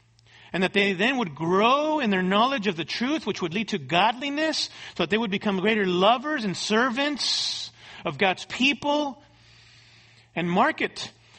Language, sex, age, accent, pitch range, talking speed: English, male, 40-59, American, 185-270 Hz, 165 wpm